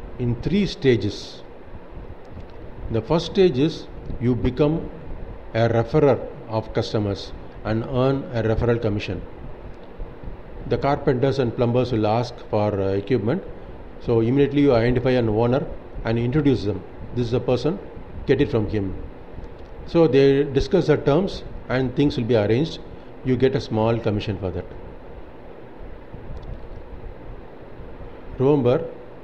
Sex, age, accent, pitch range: male, 50-69, Indian, 110-135 Hz